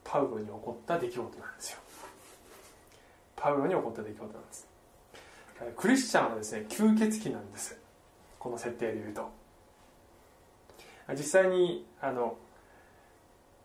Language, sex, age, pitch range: Japanese, male, 20-39, 115-185 Hz